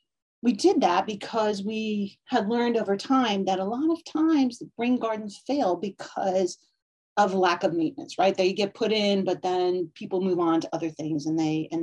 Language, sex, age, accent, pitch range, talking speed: English, female, 40-59, American, 175-225 Hz, 200 wpm